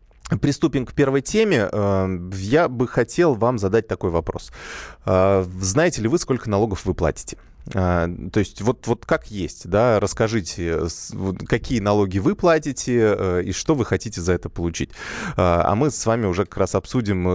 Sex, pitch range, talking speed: male, 90-120 Hz, 155 wpm